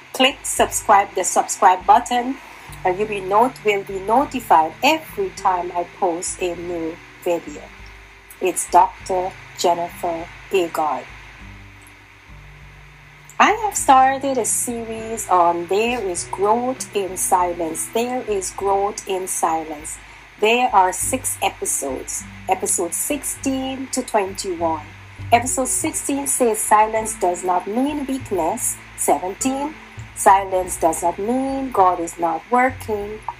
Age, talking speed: 30-49, 115 wpm